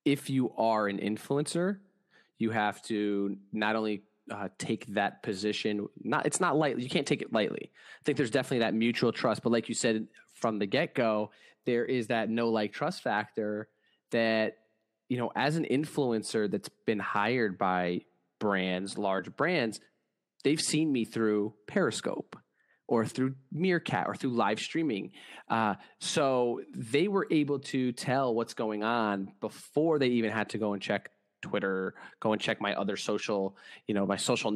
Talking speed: 170 wpm